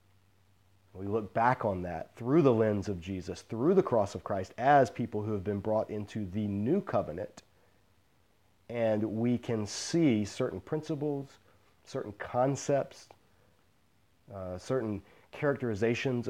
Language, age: English, 30-49